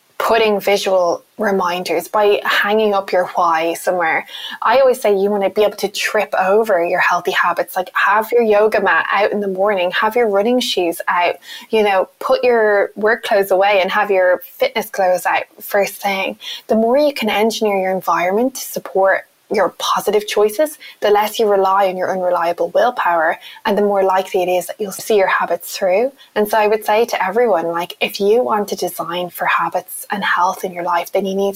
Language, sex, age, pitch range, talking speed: English, female, 10-29, 190-220 Hz, 205 wpm